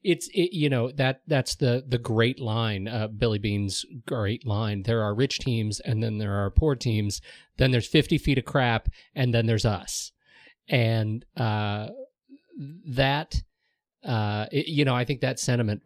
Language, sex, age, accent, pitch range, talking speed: English, male, 40-59, American, 105-145 Hz, 175 wpm